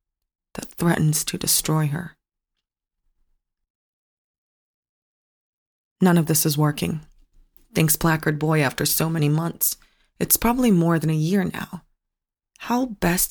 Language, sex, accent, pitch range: English, female, American, 150-170 Hz